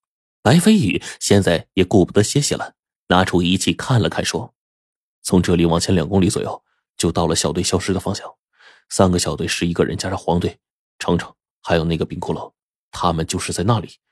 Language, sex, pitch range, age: Chinese, male, 85-125 Hz, 30-49